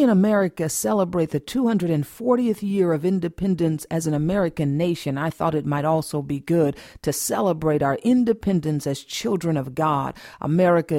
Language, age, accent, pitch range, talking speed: English, 50-69, American, 160-200 Hz, 155 wpm